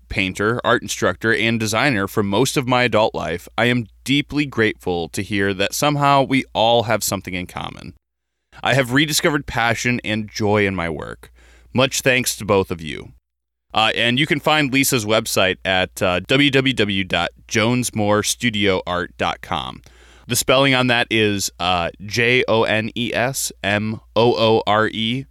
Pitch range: 100-130 Hz